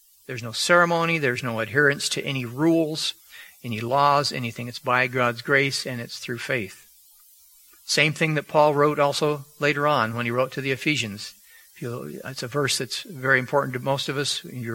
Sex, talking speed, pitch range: male, 185 wpm, 125-145 Hz